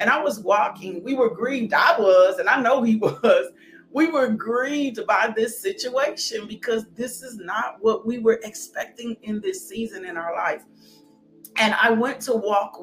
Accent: American